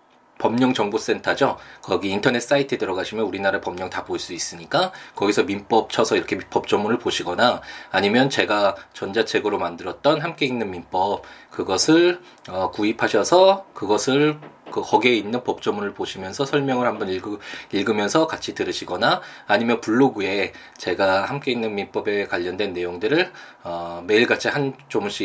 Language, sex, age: Korean, male, 20-39